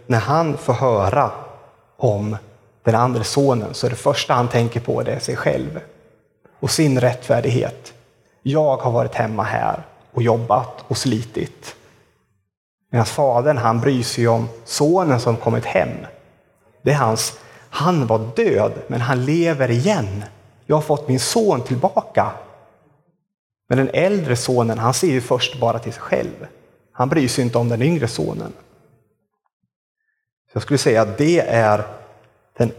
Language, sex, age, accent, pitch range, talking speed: Swedish, male, 30-49, native, 115-135 Hz, 150 wpm